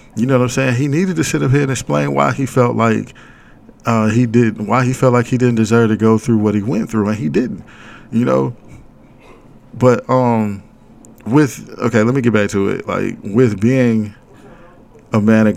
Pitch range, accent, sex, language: 100-115 Hz, American, male, English